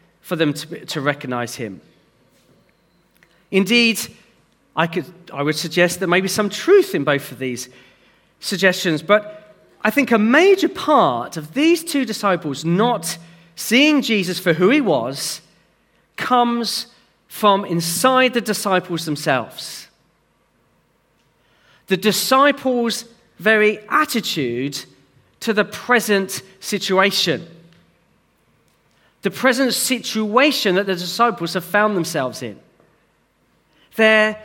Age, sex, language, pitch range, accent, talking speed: 40-59, male, English, 170-230 Hz, British, 110 wpm